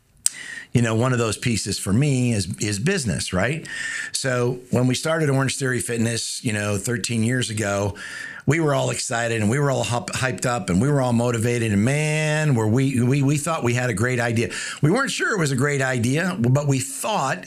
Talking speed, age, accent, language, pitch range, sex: 215 wpm, 60-79, American, English, 120-145 Hz, male